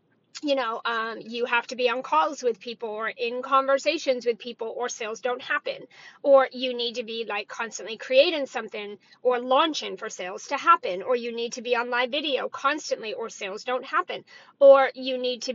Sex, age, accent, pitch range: female, 40-59, American, 235-280 Hz